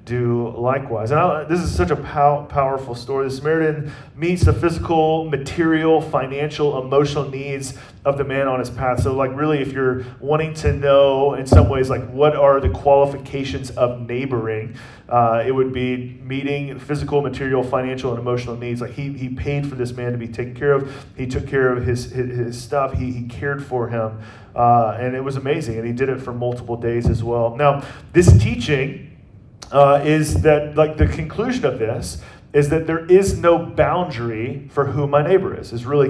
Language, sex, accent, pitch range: English, male, American, 125-145 Hz